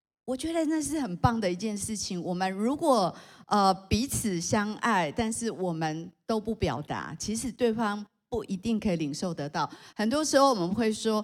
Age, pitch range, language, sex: 50-69, 170-215 Hz, Chinese, female